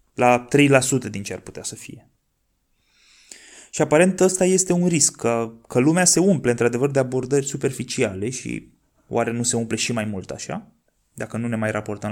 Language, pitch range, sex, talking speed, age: Romanian, 115-165 Hz, male, 185 wpm, 20-39